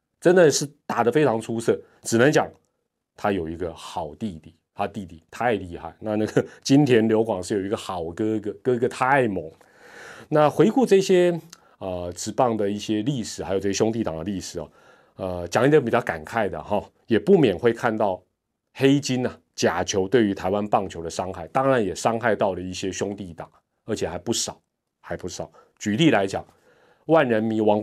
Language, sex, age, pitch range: Chinese, male, 30-49, 95-125 Hz